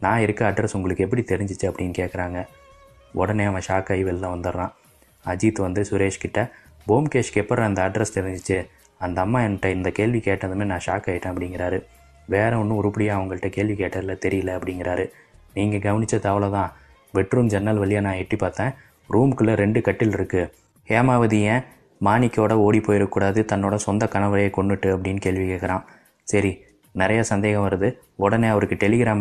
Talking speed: 150 wpm